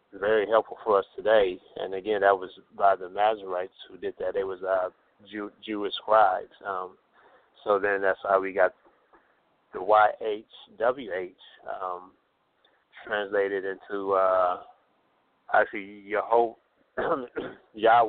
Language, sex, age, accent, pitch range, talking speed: English, male, 30-49, American, 95-115 Hz, 135 wpm